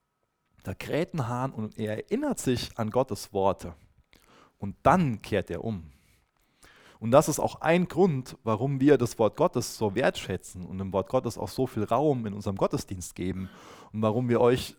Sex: male